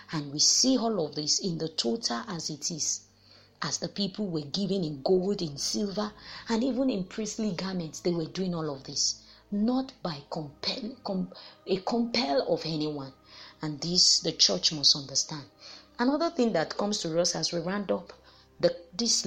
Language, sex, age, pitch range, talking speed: English, female, 30-49, 150-205 Hz, 180 wpm